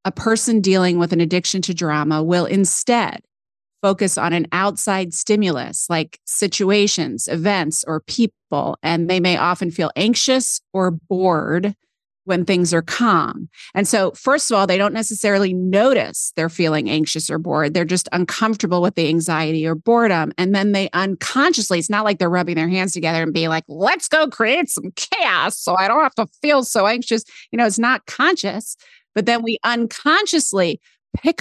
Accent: American